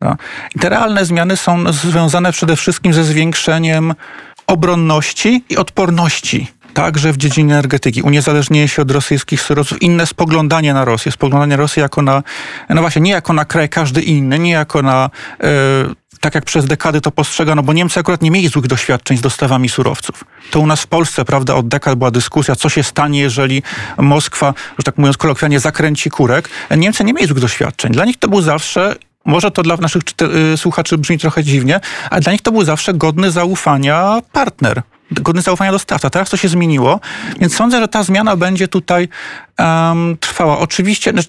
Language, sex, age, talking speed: Polish, male, 40-59, 185 wpm